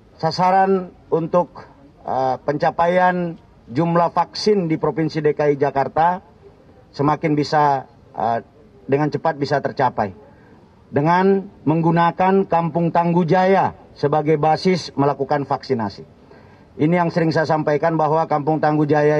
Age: 40-59